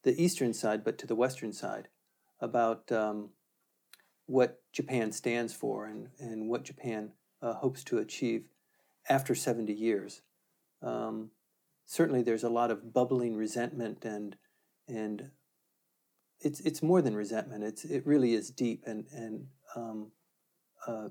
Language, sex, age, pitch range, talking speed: English, male, 50-69, 110-135 Hz, 140 wpm